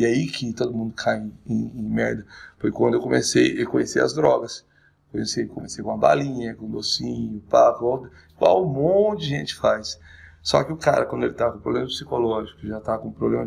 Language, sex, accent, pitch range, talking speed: Portuguese, male, Brazilian, 105-135 Hz, 220 wpm